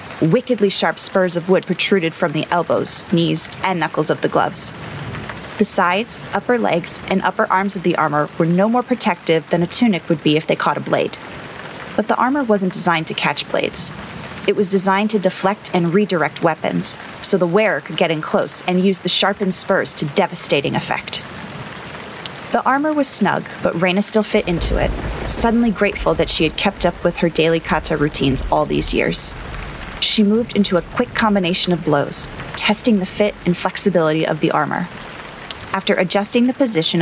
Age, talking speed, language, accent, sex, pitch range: 20-39, 185 wpm, English, American, female, 165-205 Hz